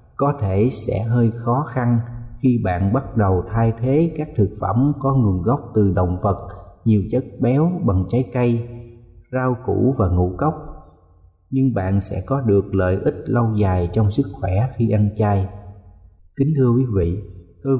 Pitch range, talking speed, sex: 100-125 Hz, 175 wpm, male